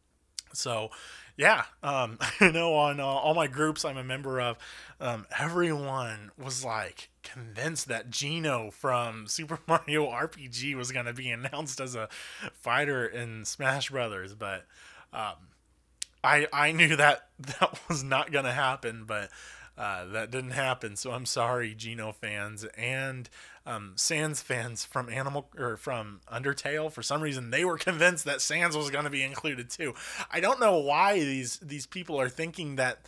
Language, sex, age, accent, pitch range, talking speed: English, male, 20-39, American, 110-150 Hz, 160 wpm